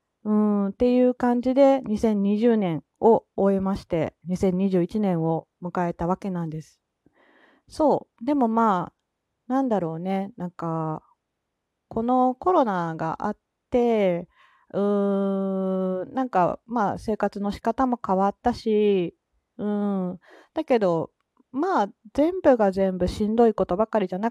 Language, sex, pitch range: Japanese, female, 180-230 Hz